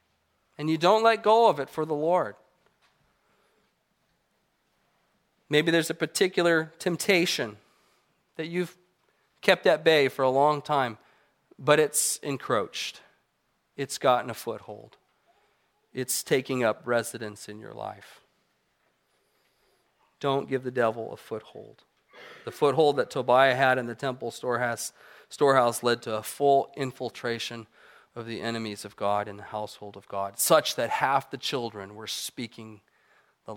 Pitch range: 115-155 Hz